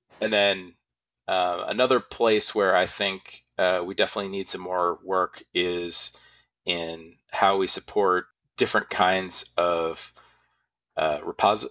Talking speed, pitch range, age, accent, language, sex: 130 wpm, 85-100 Hz, 40-59, American, English, male